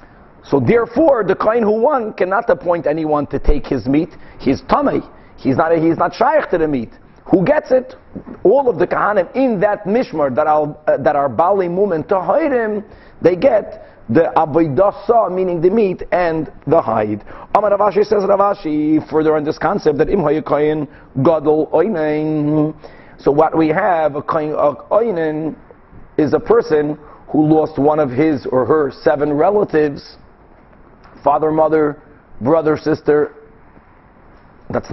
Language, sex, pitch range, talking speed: English, male, 150-180 Hz, 150 wpm